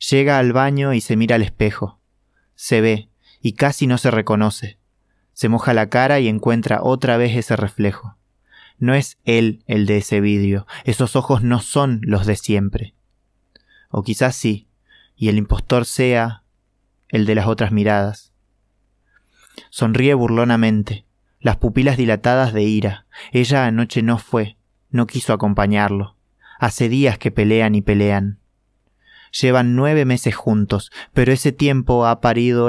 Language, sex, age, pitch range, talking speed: Spanish, male, 20-39, 105-120 Hz, 145 wpm